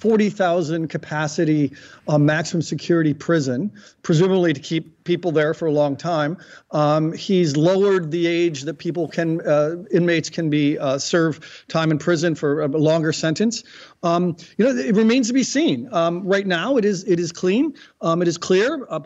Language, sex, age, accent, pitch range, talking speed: English, male, 40-59, American, 160-200 Hz, 185 wpm